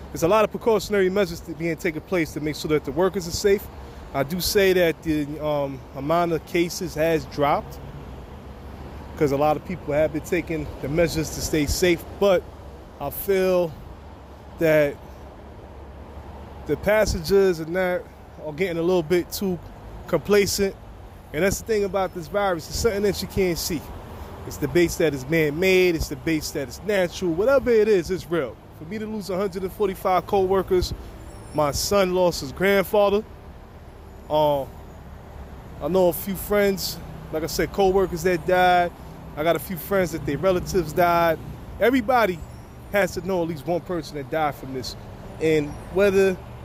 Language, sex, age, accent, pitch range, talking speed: English, male, 20-39, American, 140-195 Hz, 170 wpm